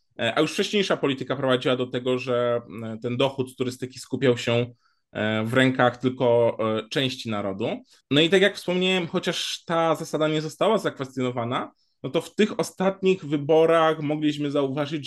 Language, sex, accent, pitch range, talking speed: Polish, male, native, 125-150 Hz, 150 wpm